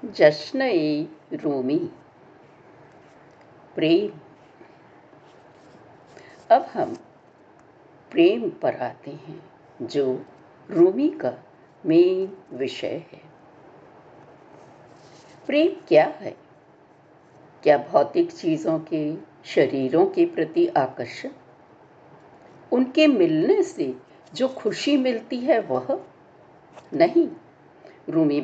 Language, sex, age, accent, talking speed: Hindi, female, 60-79, native, 75 wpm